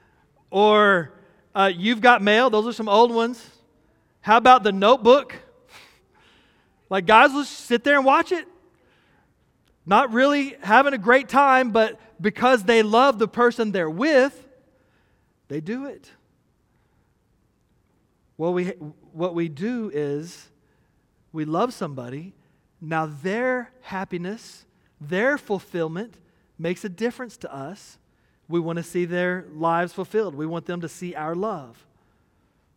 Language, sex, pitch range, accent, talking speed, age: English, male, 185-245 Hz, American, 130 wpm, 40-59